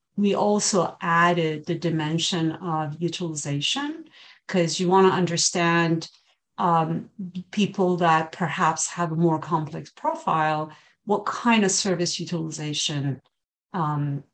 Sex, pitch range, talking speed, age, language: female, 155-180 Hz, 110 wpm, 50-69, English